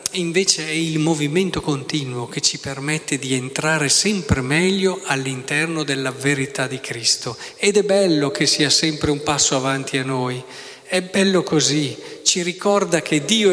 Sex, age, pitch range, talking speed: male, 40-59, 135-180 Hz, 155 wpm